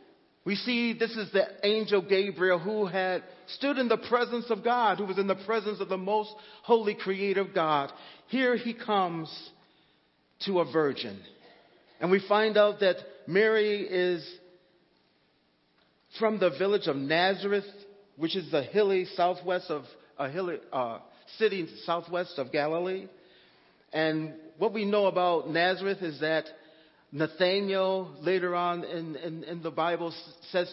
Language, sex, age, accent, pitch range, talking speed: English, male, 40-59, American, 160-205 Hz, 145 wpm